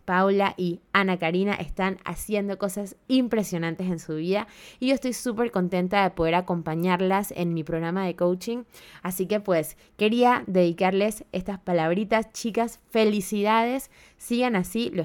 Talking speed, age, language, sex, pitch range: 145 wpm, 20-39, Spanish, female, 175-230 Hz